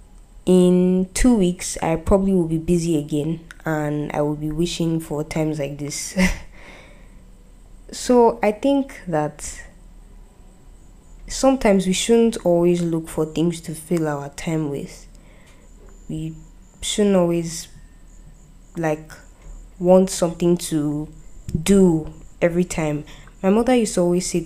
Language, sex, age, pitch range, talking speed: English, female, 20-39, 155-180 Hz, 125 wpm